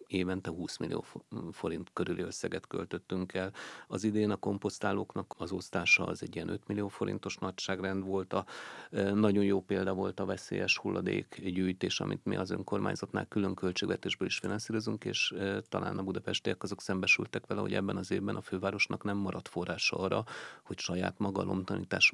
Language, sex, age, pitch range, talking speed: Hungarian, male, 40-59, 90-100 Hz, 155 wpm